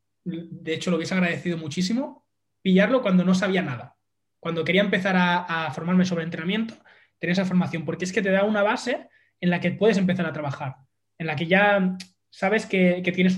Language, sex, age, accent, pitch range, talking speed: Spanish, male, 20-39, Spanish, 145-180 Hz, 195 wpm